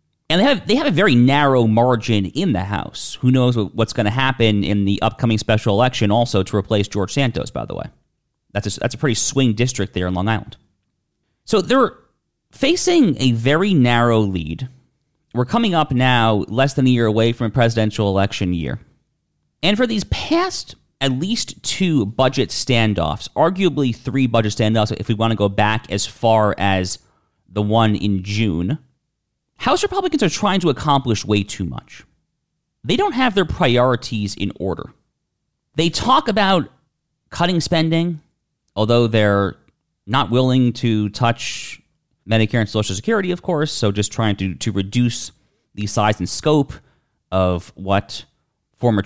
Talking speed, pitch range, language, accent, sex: 165 wpm, 105-135 Hz, English, American, male